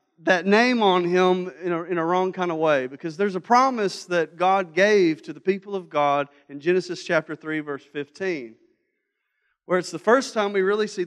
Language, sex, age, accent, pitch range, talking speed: English, male, 40-59, American, 165-220 Hz, 195 wpm